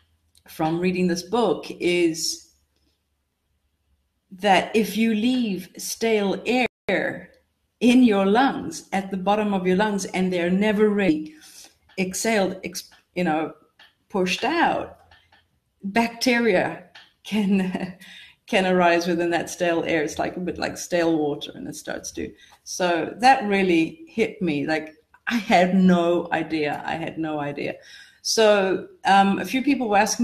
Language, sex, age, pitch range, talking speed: English, female, 40-59, 175-210 Hz, 135 wpm